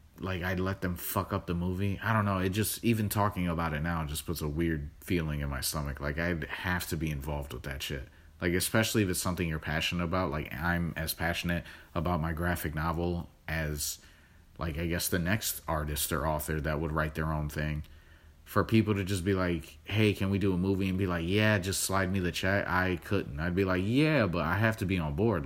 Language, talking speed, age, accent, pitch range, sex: English, 235 wpm, 30-49, American, 80-100 Hz, male